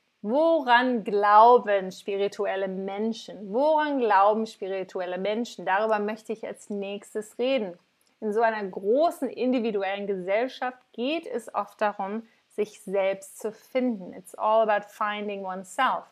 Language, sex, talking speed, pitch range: German, female, 125 wpm, 200-235 Hz